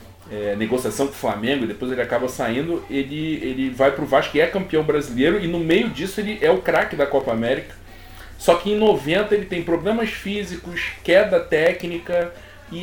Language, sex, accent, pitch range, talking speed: Portuguese, male, Brazilian, 120-185 Hz, 195 wpm